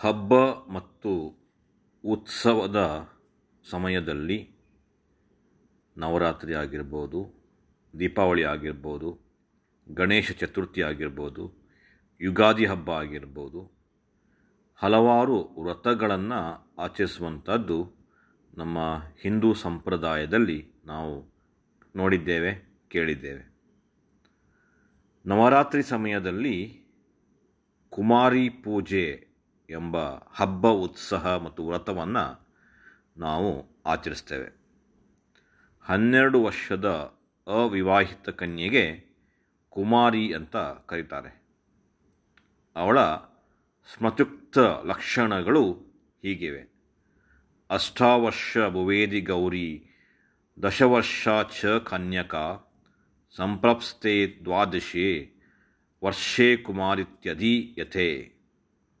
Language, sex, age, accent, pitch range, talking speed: English, male, 40-59, Indian, 85-110 Hz, 50 wpm